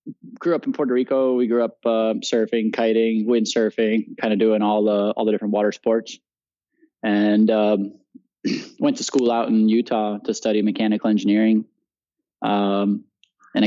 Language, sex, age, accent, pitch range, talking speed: English, male, 20-39, American, 105-125 Hz, 160 wpm